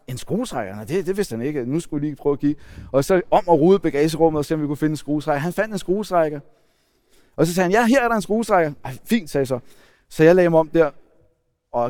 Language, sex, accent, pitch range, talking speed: Danish, male, native, 125-190 Hz, 270 wpm